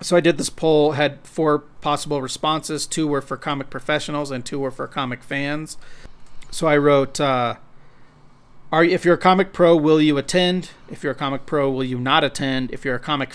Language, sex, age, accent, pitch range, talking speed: English, male, 40-59, American, 135-155 Hz, 205 wpm